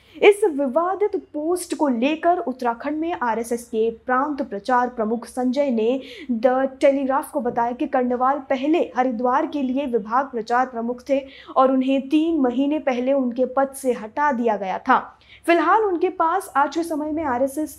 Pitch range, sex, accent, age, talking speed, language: 245-310 Hz, female, native, 20-39, 160 wpm, Hindi